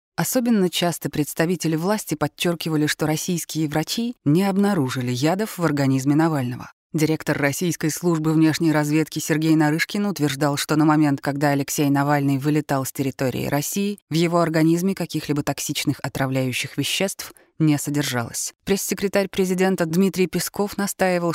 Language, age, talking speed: Russian, 20-39, 130 wpm